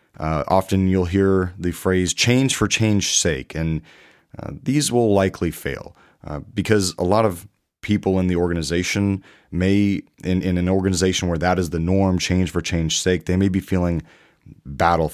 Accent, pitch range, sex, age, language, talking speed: American, 80-100 Hz, male, 30-49, English, 175 wpm